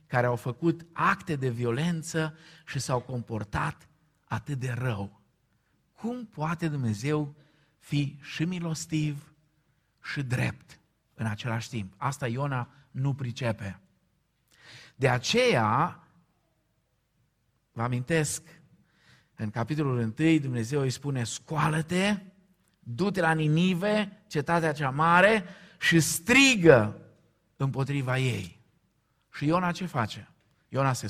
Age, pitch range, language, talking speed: 50-69, 125-165 Hz, Romanian, 105 wpm